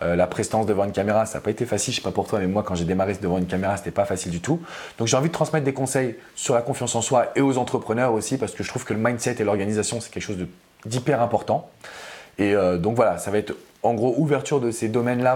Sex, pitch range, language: male, 100-125 Hz, French